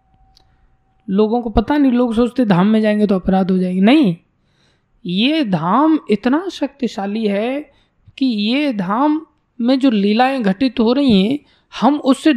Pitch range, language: 190-295 Hz, Hindi